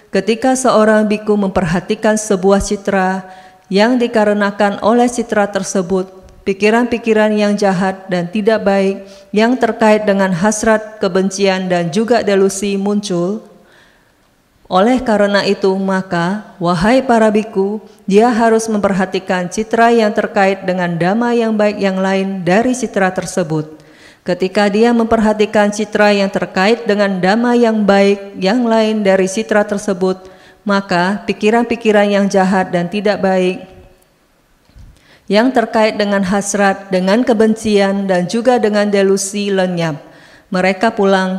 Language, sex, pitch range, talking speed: Indonesian, female, 190-215 Hz, 120 wpm